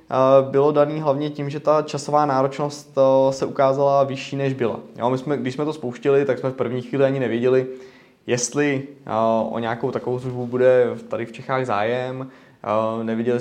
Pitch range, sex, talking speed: 120-135 Hz, male, 165 wpm